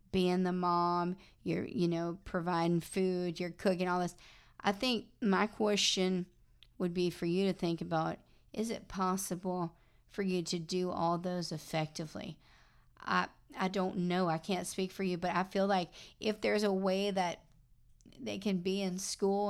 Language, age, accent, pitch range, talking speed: English, 40-59, American, 170-190 Hz, 170 wpm